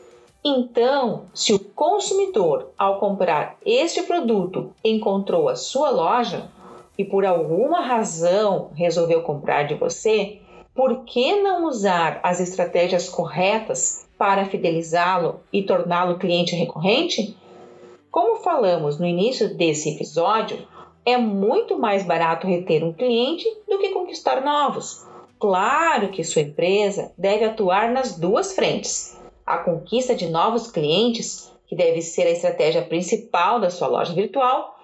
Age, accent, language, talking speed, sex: 40-59, Brazilian, Portuguese, 125 wpm, female